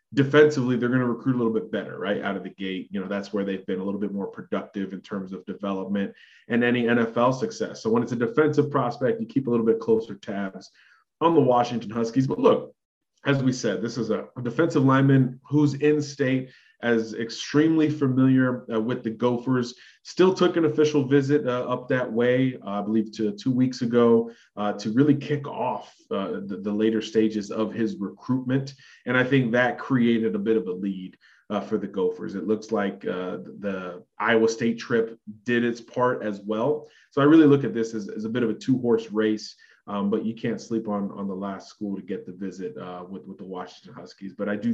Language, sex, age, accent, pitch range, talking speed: English, male, 30-49, American, 110-135 Hz, 220 wpm